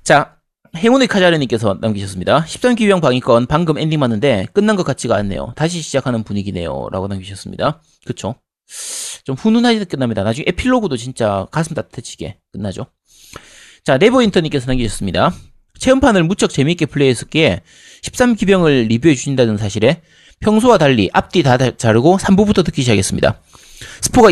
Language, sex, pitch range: Korean, male, 115-180 Hz